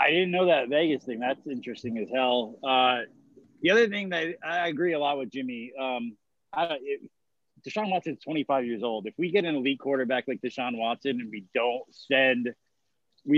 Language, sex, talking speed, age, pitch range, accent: English, male, 200 wpm, 20-39, 120-155 Hz, American